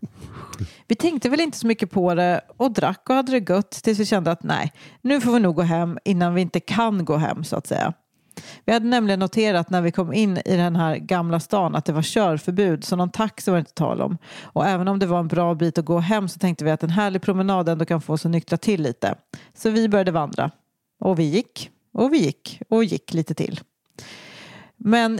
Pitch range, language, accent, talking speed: 170-220 Hz, English, Swedish, 235 wpm